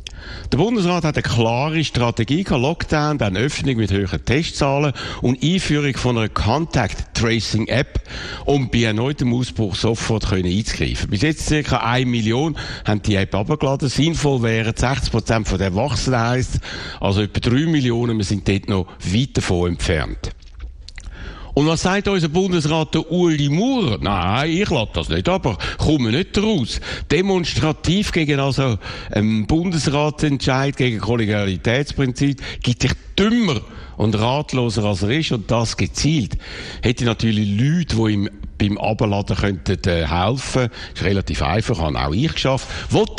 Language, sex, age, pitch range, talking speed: German, male, 60-79, 105-150 Hz, 145 wpm